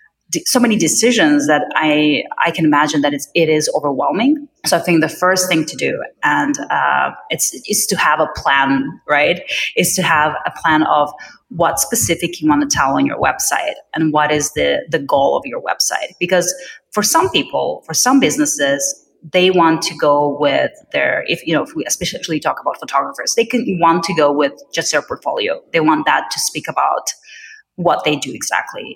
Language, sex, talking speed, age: English, female, 195 wpm, 30-49